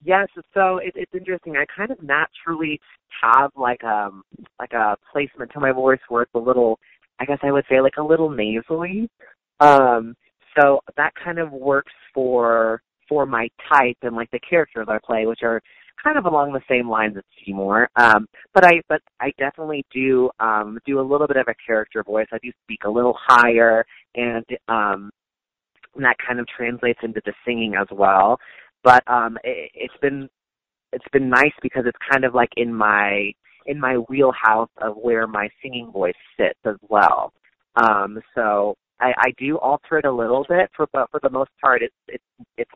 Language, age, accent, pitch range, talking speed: English, 30-49, American, 110-140 Hz, 190 wpm